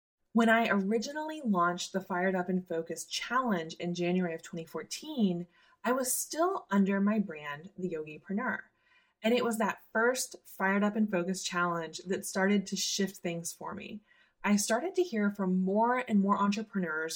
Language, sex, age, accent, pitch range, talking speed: English, female, 20-39, American, 175-225 Hz, 170 wpm